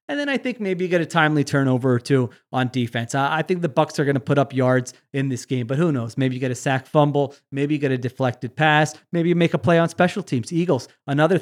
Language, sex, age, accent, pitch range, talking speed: English, male, 30-49, American, 125-155 Hz, 275 wpm